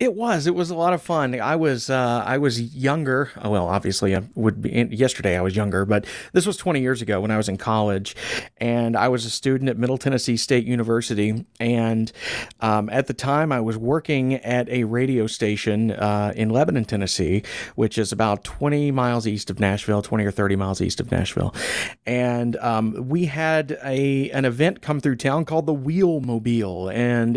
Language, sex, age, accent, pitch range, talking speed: English, male, 40-59, American, 110-140 Hz, 195 wpm